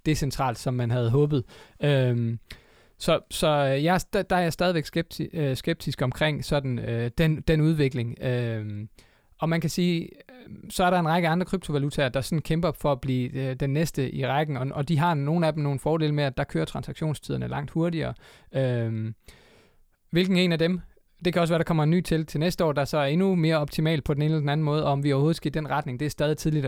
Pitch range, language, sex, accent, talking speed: 135-165 Hz, Danish, male, native, 230 wpm